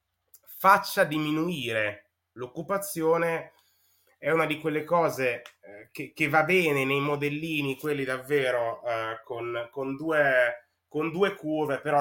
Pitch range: 120-155 Hz